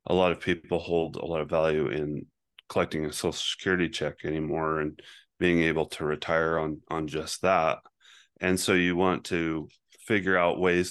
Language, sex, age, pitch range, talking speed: English, male, 30-49, 80-90 Hz, 180 wpm